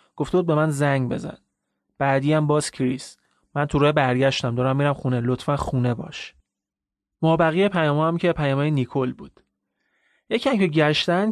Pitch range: 125-160 Hz